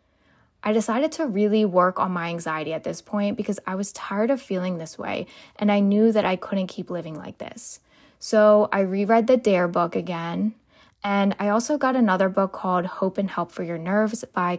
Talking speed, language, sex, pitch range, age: 205 wpm, English, female, 180-220 Hz, 10-29